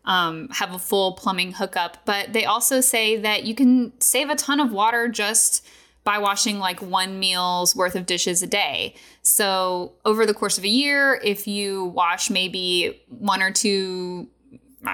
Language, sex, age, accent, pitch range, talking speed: English, female, 10-29, American, 190-255 Hz, 175 wpm